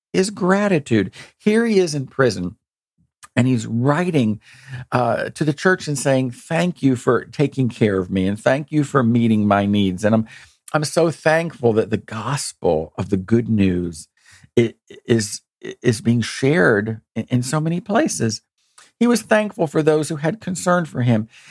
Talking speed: 175 wpm